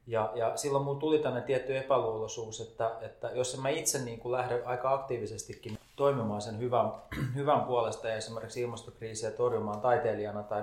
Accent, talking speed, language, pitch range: native, 165 wpm, Finnish, 110-135 Hz